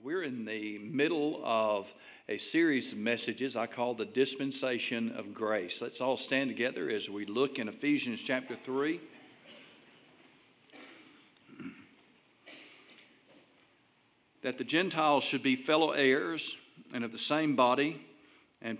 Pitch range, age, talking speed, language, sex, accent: 115-150 Hz, 50-69, 125 wpm, English, male, American